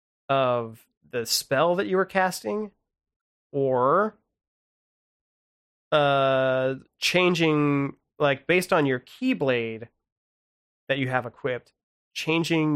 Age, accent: 30-49, American